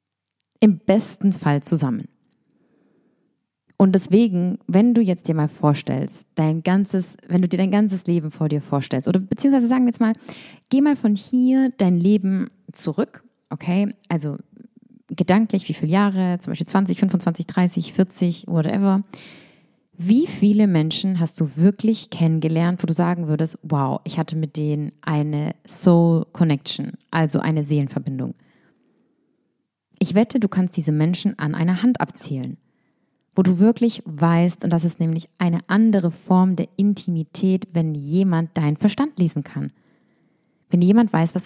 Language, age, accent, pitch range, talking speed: English, 20-39, German, 165-205 Hz, 150 wpm